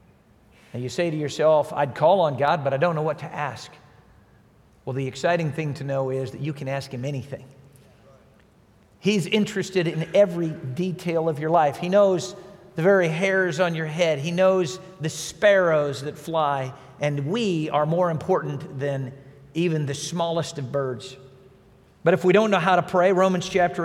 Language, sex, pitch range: English, male, 145-185 Hz